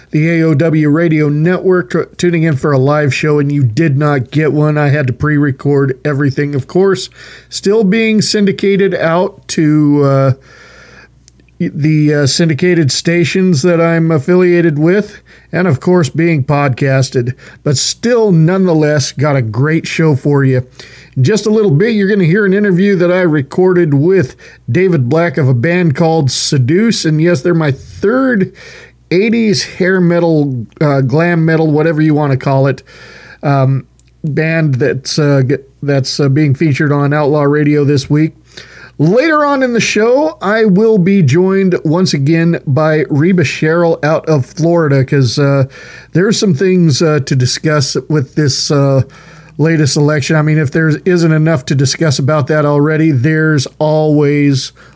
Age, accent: 50-69, American